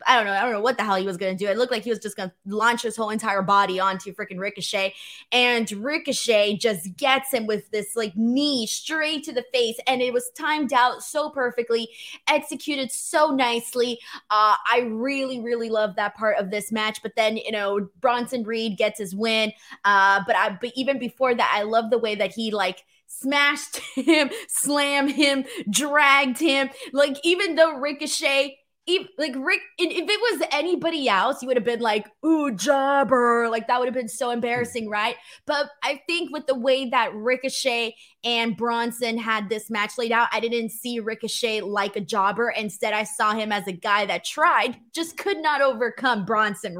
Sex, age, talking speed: female, 20-39, 195 wpm